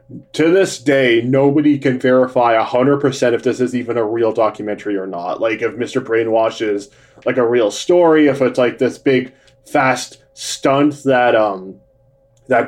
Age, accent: 20-39, American